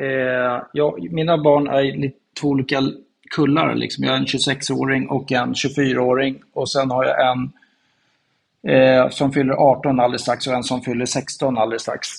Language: Swedish